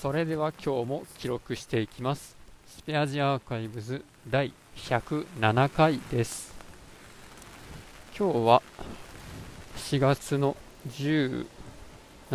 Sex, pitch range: male, 105-140 Hz